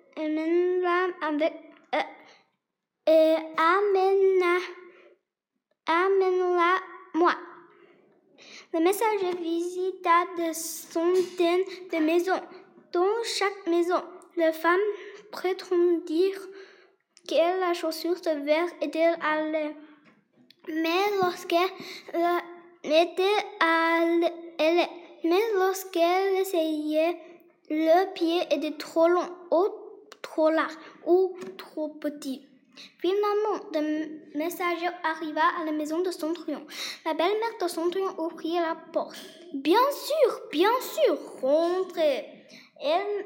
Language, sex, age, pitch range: Chinese, female, 10-29, 320-365 Hz